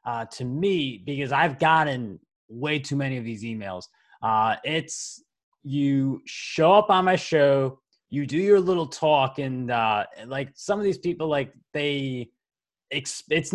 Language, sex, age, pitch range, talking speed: English, male, 20-39, 125-155 Hz, 155 wpm